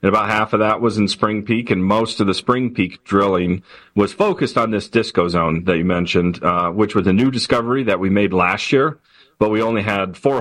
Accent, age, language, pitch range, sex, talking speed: American, 40-59, English, 95-110 Hz, male, 235 wpm